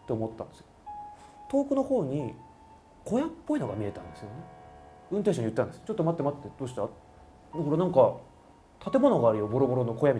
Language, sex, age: Japanese, male, 30-49